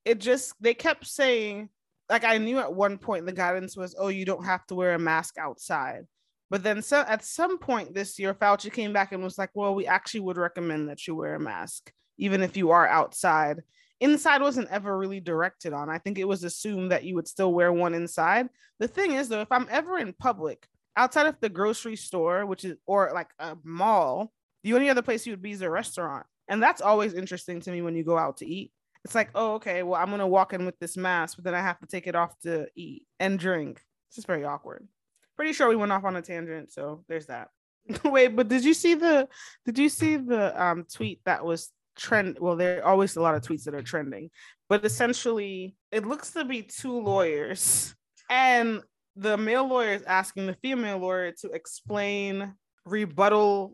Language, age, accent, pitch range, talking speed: English, 20-39, American, 180-240 Hz, 220 wpm